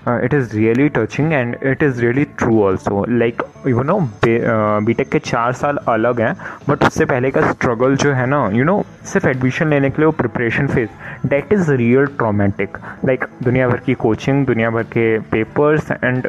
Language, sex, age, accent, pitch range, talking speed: Hindi, male, 20-39, native, 115-150 Hz, 195 wpm